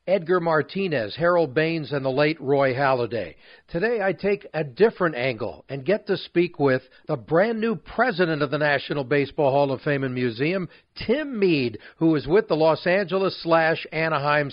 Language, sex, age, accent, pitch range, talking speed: English, male, 40-59, American, 140-185 Hz, 180 wpm